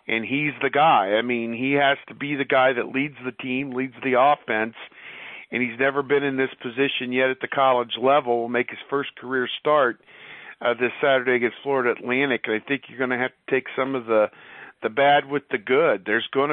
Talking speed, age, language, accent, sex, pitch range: 220 wpm, 50-69, English, American, male, 120-140 Hz